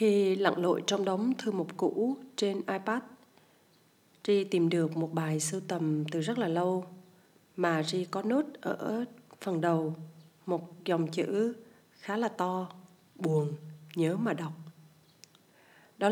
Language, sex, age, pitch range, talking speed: Vietnamese, female, 30-49, 165-205 Hz, 145 wpm